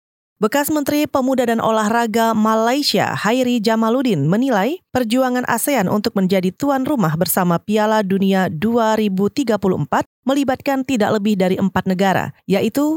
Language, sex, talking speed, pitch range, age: Indonesian, female, 120 wpm, 200-260 Hz, 30-49